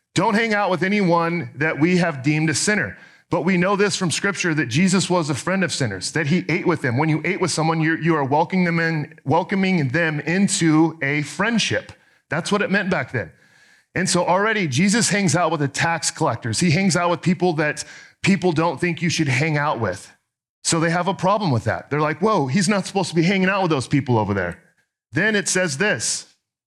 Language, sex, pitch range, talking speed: English, male, 130-175 Hz, 220 wpm